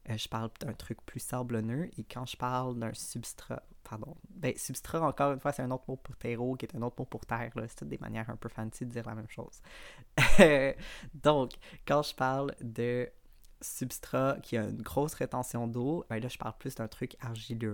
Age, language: 20-39, French